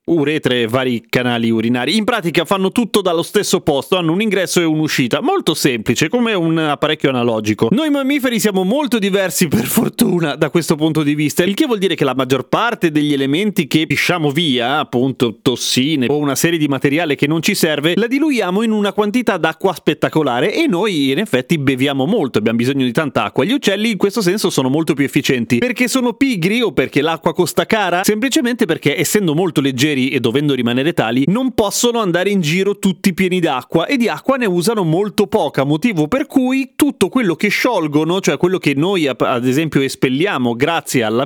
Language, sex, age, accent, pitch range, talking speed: Italian, male, 30-49, native, 145-210 Hz, 195 wpm